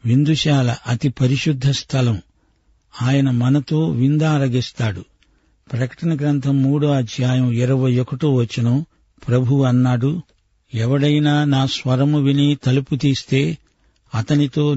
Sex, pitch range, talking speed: male, 120-140 Hz, 95 wpm